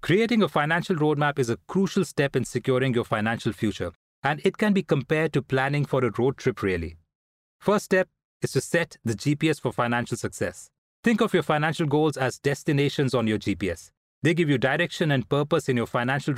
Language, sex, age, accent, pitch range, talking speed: English, male, 30-49, Indian, 125-165 Hz, 200 wpm